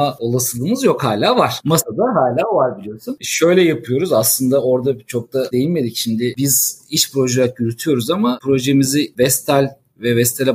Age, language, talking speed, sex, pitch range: 50-69, Turkish, 140 wpm, male, 120-150 Hz